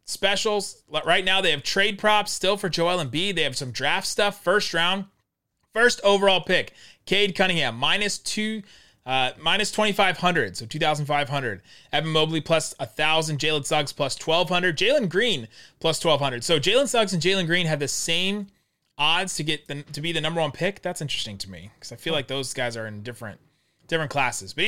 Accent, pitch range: American, 140-190 Hz